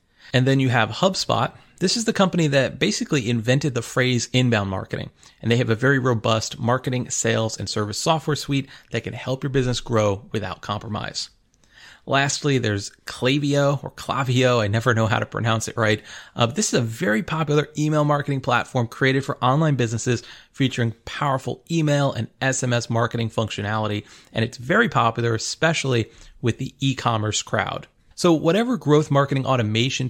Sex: male